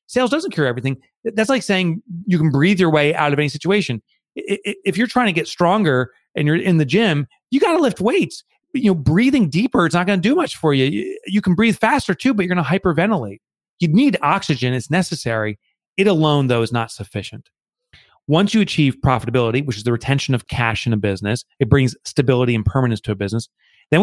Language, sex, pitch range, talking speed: English, male, 115-170 Hz, 220 wpm